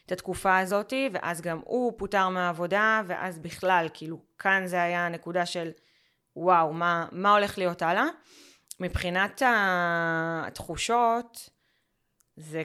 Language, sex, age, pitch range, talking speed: Hebrew, female, 20-39, 165-195 Hz, 120 wpm